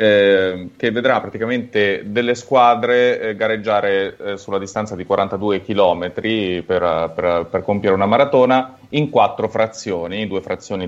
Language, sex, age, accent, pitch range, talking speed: Italian, male, 30-49, native, 95-120 Hz, 140 wpm